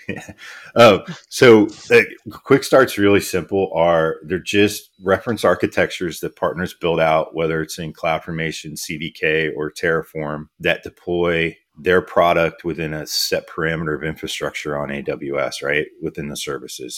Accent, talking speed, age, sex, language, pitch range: American, 140 wpm, 30-49, male, English, 75-85 Hz